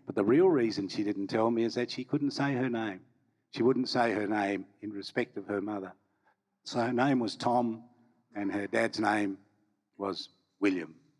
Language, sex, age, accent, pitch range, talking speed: English, male, 50-69, Australian, 105-125 Hz, 195 wpm